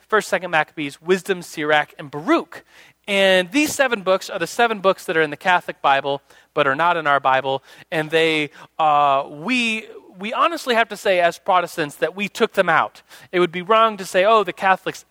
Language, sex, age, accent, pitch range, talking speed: English, male, 30-49, American, 165-220 Hz, 205 wpm